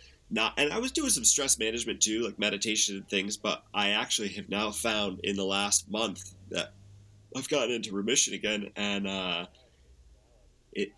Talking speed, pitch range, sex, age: 175 wpm, 95-105 Hz, male, 20-39